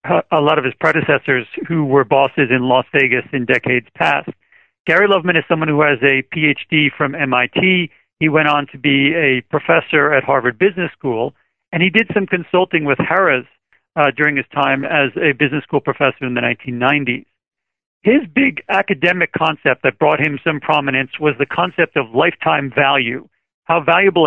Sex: male